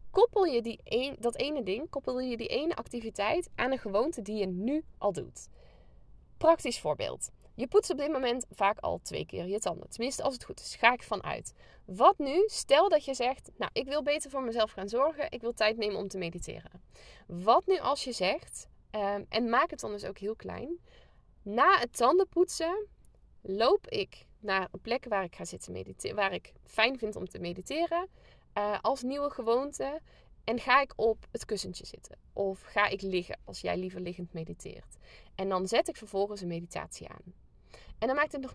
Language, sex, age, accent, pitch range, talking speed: Dutch, female, 20-39, Dutch, 205-300 Hz, 200 wpm